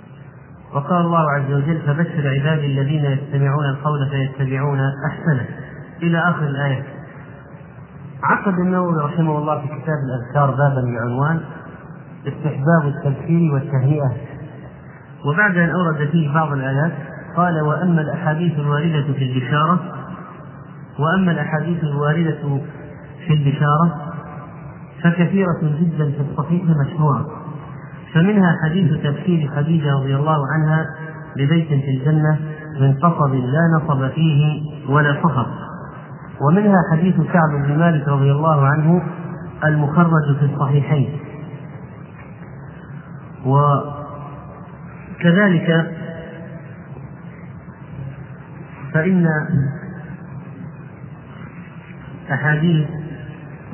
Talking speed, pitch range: 85 wpm, 145-165 Hz